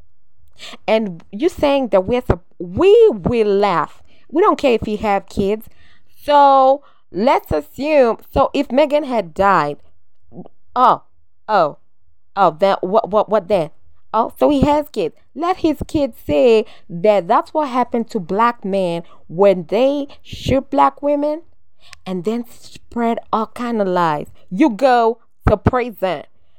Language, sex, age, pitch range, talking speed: English, female, 20-39, 175-265 Hz, 145 wpm